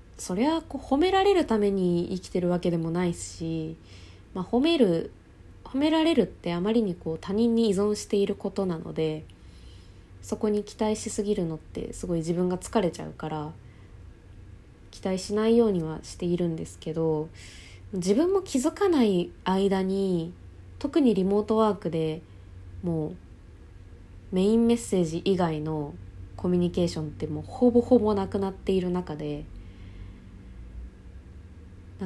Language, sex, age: Japanese, female, 20-39